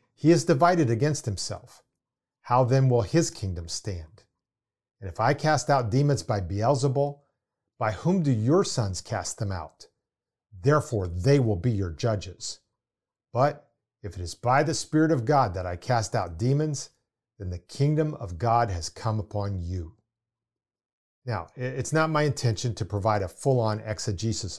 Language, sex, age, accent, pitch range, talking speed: English, male, 40-59, American, 105-140 Hz, 165 wpm